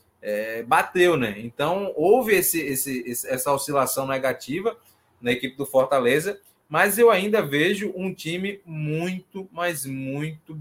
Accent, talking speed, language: Brazilian, 130 wpm, Portuguese